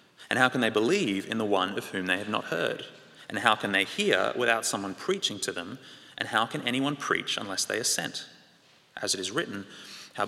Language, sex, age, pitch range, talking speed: English, male, 20-39, 105-130 Hz, 220 wpm